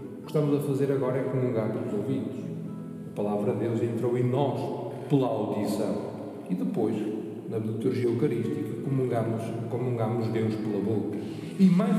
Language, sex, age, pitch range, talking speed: Portuguese, male, 40-59, 125-175 Hz, 155 wpm